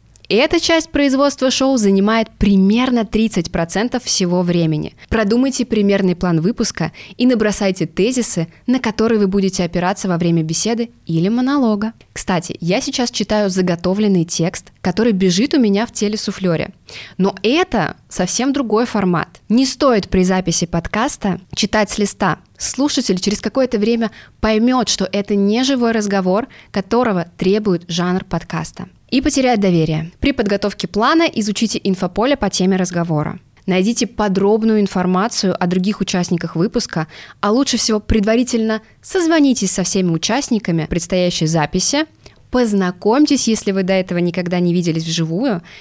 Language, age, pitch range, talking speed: Russian, 20-39, 180-230 Hz, 135 wpm